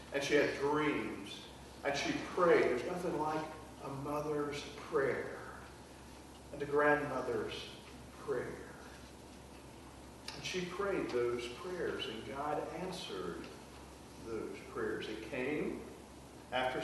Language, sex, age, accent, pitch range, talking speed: English, male, 50-69, American, 115-175 Hz, 105 wpm